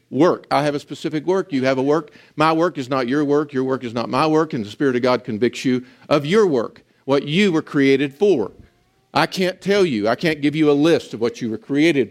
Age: 50-69